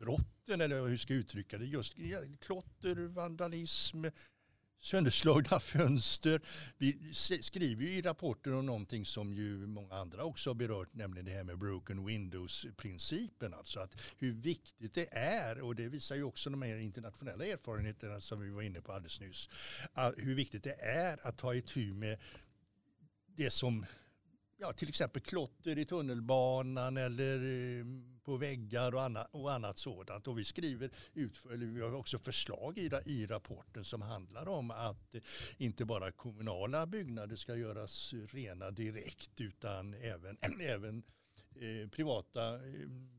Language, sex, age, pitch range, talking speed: Swedish, male, 60-79, 105-140 Hz, 150 wpm